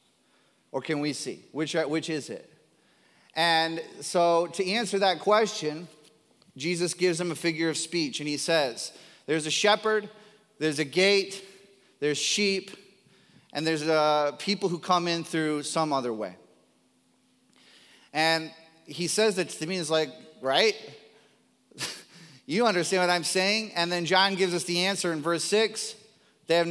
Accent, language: American, English